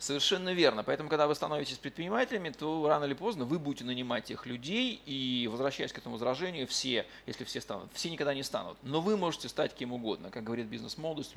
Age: 20-39